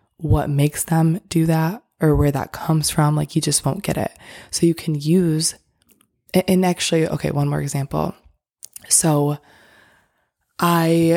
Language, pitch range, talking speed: English, 145-165 Hz, 150 wpm